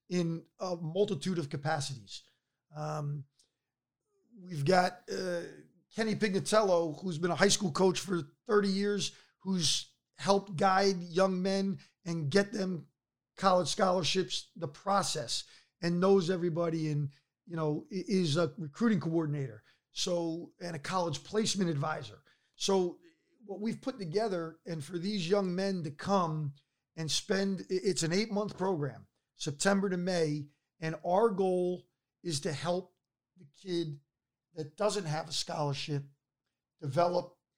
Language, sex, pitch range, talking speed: English, male, 150-185 Hz, 135 wpm